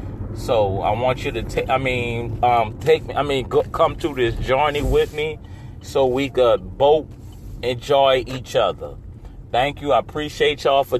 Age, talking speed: 30-49, 180 wpm